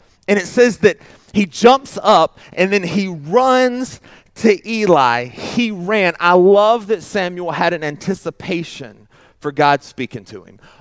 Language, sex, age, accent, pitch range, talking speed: English, male, 30-49, American, 125-175 Hz, 150 wpm